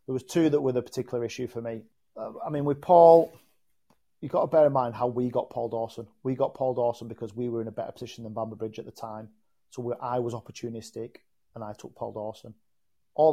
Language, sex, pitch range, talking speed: English, male, 115-135 Hz, 240 wpm